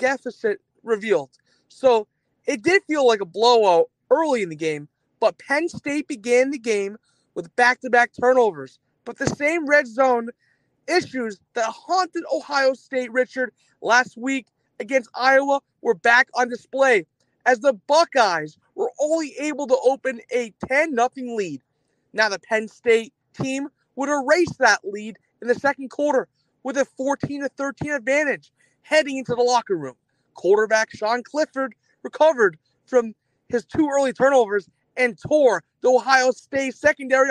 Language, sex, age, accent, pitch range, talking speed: English, male, 30-49, American, 225-275 Hz, 145 wpm